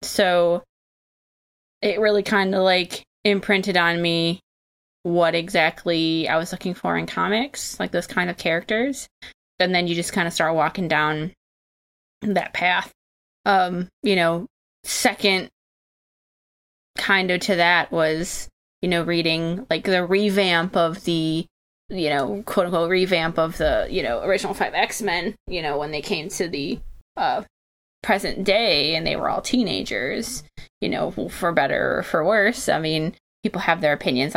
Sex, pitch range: female, 170-205 Hz